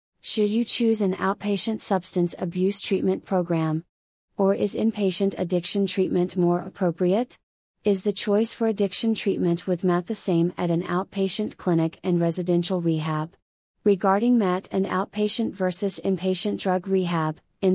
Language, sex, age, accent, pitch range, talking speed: English, female, 30-49, American, 175-200 Hz, 140 wpm